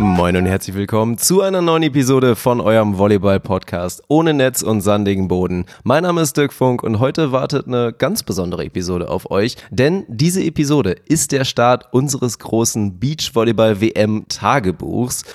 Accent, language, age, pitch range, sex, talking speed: German, German, 30-49, 115-165 Hz, male, 155 wpm